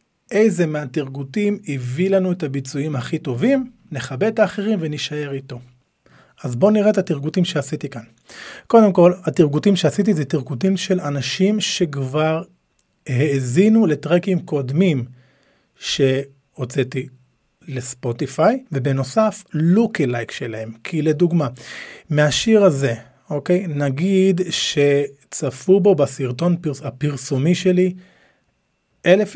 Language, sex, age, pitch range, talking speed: Hebrew, male, 40-59, 140-190 Hz, 105 wpm